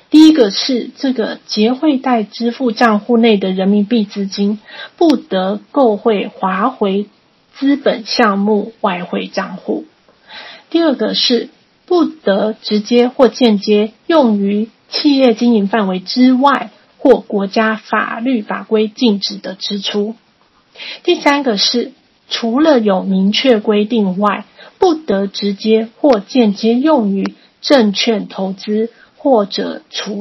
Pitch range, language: 210-250 Hz, Chinese